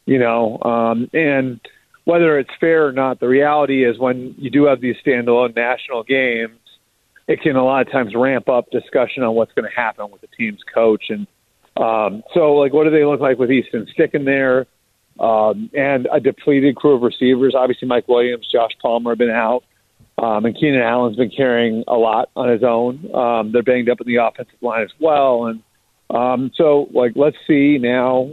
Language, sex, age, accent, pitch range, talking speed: English, male, 40-59, American, 120-145 Hz, 200 wpm